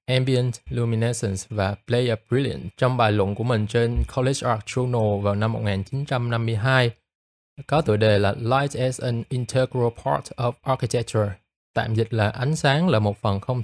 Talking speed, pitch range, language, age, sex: 165 wpm, 110-130 Hz, Vietnamese, 20-39, male